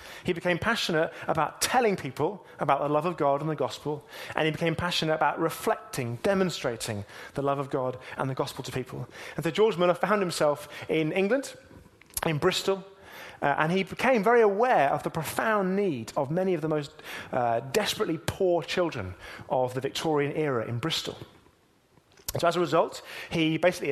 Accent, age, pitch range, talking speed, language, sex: British, 30-49, 145-195 Hz, 180 wpm, English, male